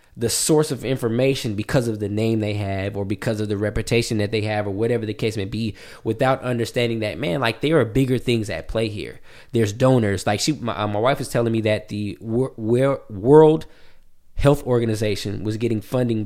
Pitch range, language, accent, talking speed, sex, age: 105-125 Hz, English, American, 200 wpm, male, 20-39